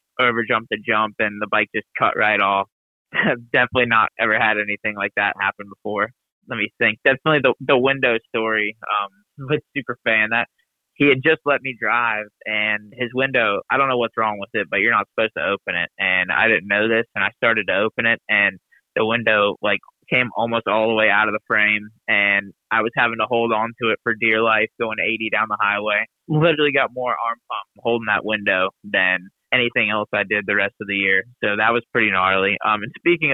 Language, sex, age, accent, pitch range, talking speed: English, male, 20-39, American, 105-125 Hz, 220 wpm